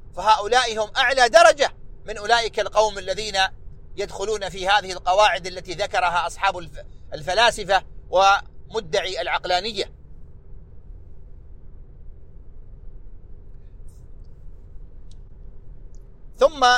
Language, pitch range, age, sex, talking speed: Arabic, 170-210 Hz, 40-59, male, 70 wpm